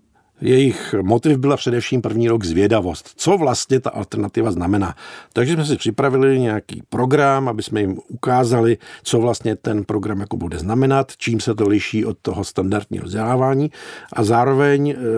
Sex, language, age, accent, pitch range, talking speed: male, Czech, 50-69, native, 110-130 Hz, 155 wpm